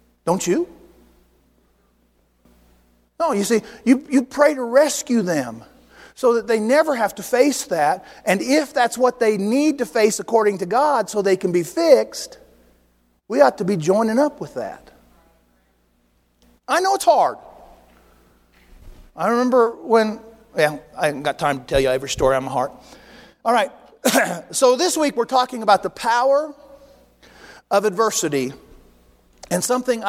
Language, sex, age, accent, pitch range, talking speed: English, male, 50-69, American, 145-240 Hz, 155 wpm